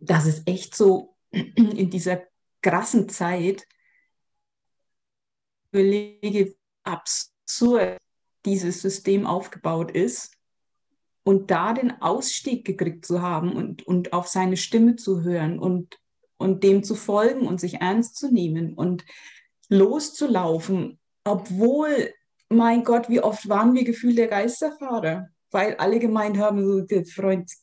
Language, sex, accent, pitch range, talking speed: German, female, German, 185-235 Hz, 120 wpm